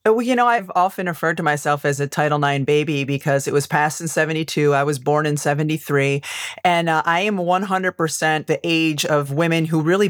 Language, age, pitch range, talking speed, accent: English, 30-49, 150-185 Hz, 210 wpm, American